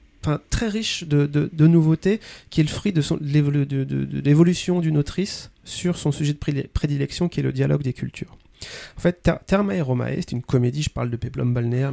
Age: 30-49